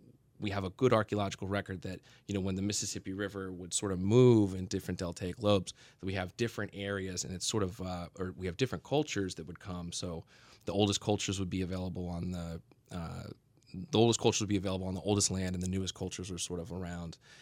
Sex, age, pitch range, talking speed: male, 20-39, 90-105 Hz, 220 wpm